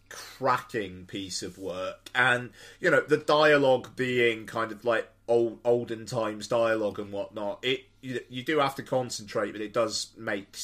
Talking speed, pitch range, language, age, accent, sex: 170 wpm, 100-125 Hz, English, 30-49, British, male